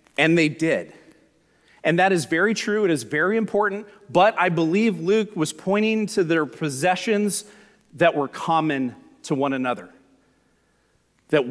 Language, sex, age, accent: English, male, 40-59, American